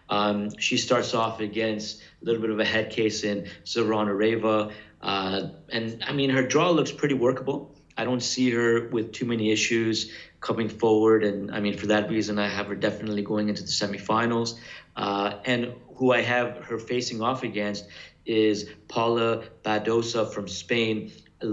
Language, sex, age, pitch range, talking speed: English, male, 30-49, 105-115 Hz, 175 wpm